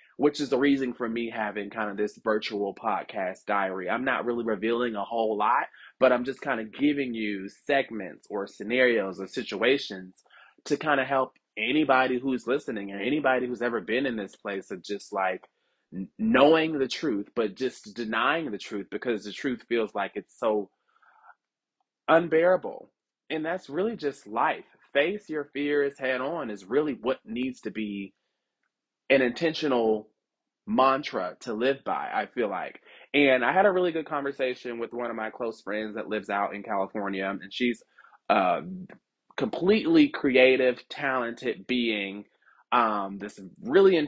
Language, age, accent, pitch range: English, 20-39, American, 105-140 Hz